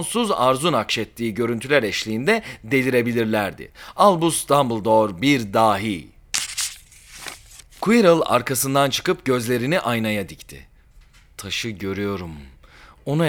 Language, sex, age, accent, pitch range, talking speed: Turkish, male, 40-59, native, 115-175 Hz, 85 wpm